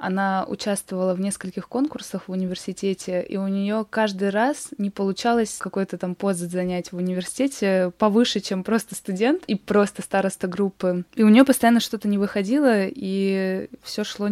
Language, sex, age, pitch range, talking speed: Russian, female, 20-39, 185-225 Hz, 160 wpm